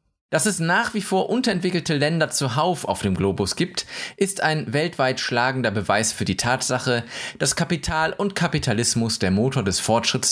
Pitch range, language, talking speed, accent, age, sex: 105-155 Hz, German, 165 wpm, German, 20-39, male